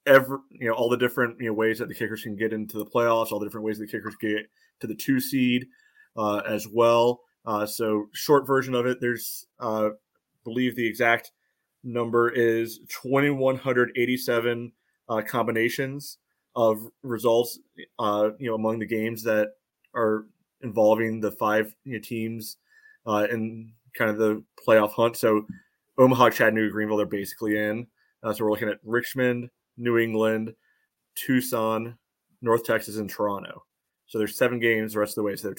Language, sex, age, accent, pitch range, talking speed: English, male, 30-49, American, 110-125 Hz, 165 wpm